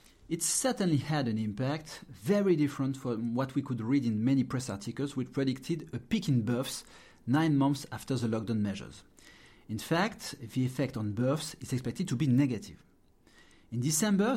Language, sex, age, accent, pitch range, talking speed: English, male, 40-59, French, 125-160 Hz, 170 wpm